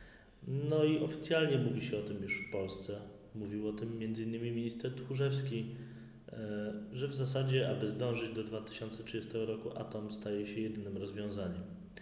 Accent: native